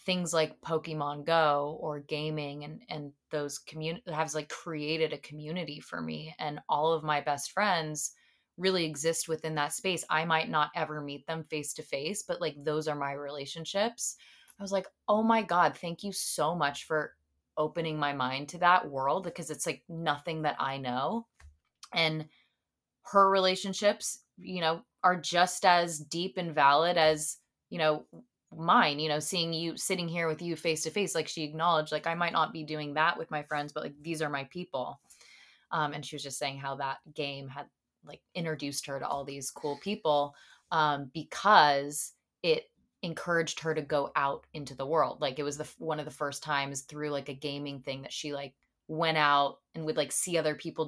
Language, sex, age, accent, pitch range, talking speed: English, female, 20-39, American, 145-165 Hz, 195 wpm